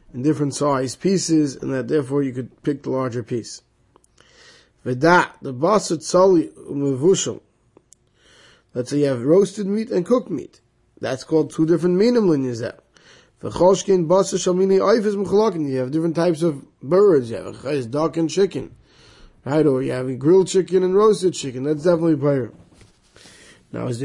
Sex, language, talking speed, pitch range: male, English, 145 wpm, 140-180 Hz